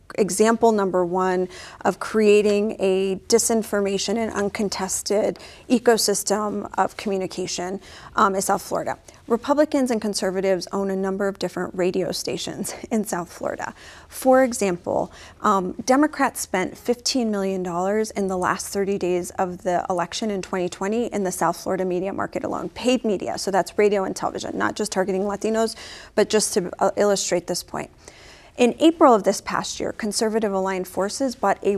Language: English